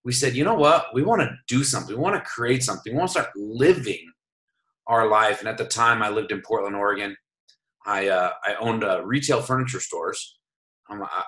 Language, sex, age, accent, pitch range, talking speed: English, male, 30-49, American, 105-130 Hz, 215 wpm